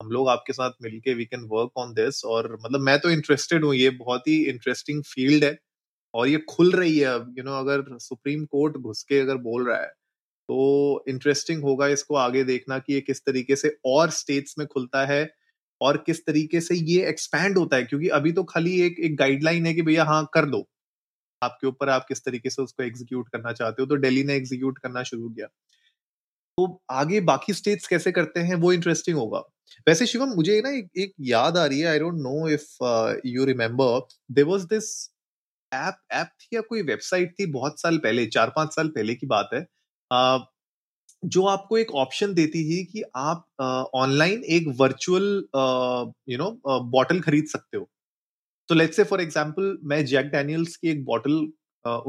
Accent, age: native, 30-49